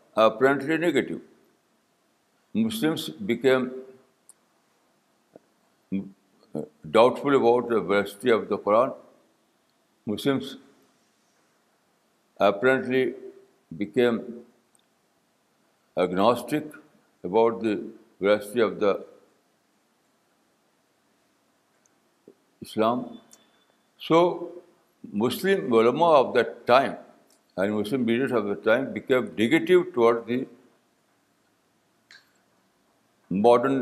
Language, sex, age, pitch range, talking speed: Urdu, male, 60-79, 110-150 Hz, 65 wpm